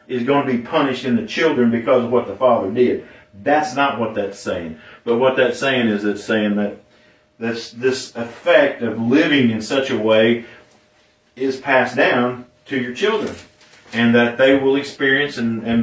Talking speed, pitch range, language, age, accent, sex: 185 wpm, 115-170 Hz, English, 40-59, American, male